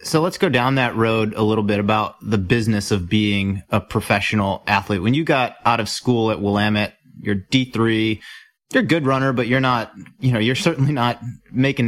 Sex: male